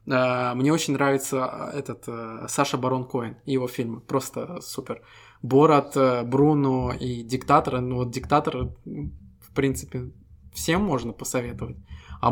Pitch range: 120-140 Hz